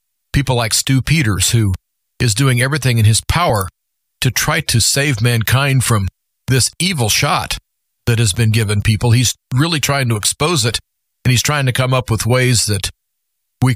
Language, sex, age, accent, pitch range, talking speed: English, male, 40-59, American, 110-135 Hz, 180 wpm